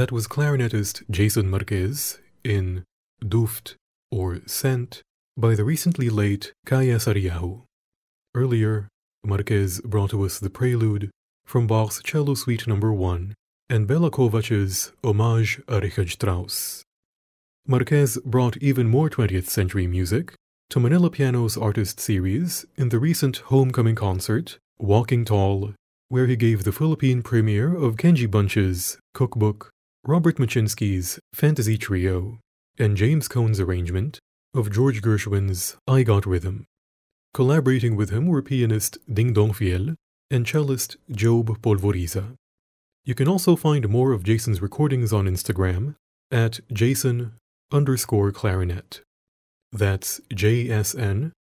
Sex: male